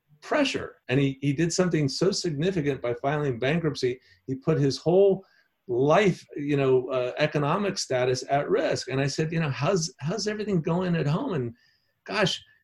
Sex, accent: male, American